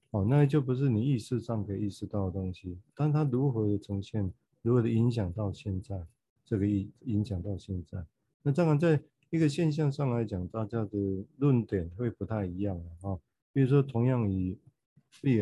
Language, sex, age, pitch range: Chinese, male, 50-69, 100-130 Hz